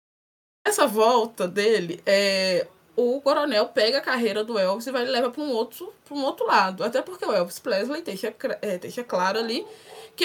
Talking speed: 180 wpm